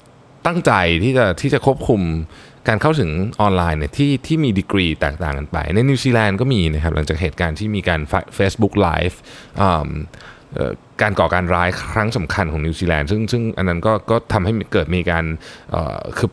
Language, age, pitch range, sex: Thai, 20-39, 90-120 Hz, male